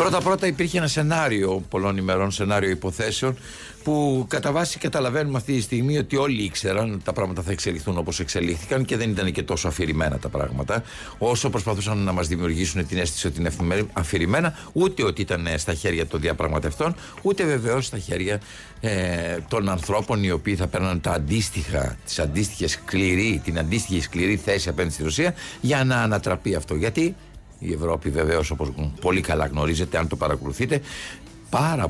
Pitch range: 80-130 Hz